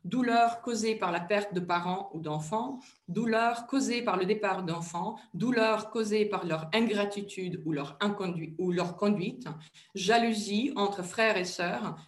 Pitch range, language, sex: 180-225 Hz, French, female